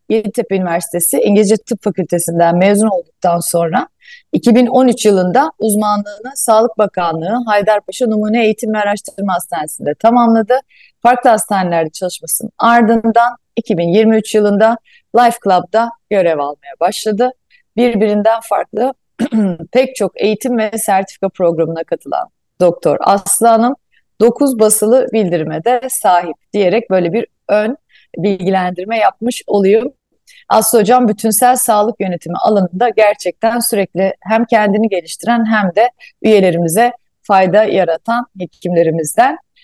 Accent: native